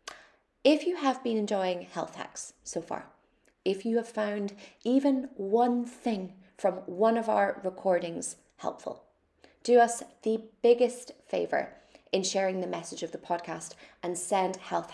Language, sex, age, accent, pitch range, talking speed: English, female, 20-39, British, 180-225 Hz, 150 wpm